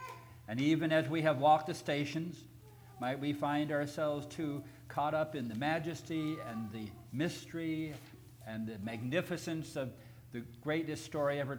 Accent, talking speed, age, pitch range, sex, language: American, 150 wpm, 60-79, 120-145 Hz, male, English